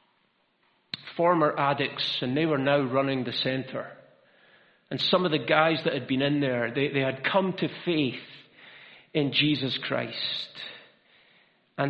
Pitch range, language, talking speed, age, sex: 135-180 Hz, English, 145 wpm, 50-69, male